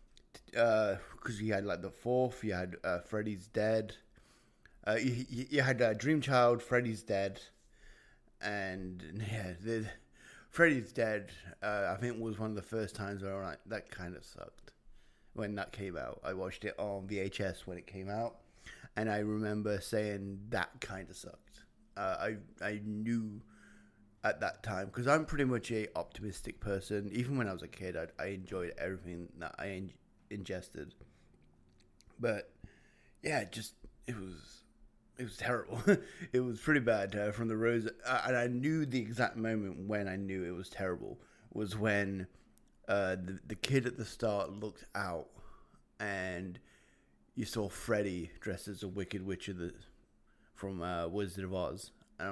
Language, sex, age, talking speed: English, male, 30-49, 170 wpm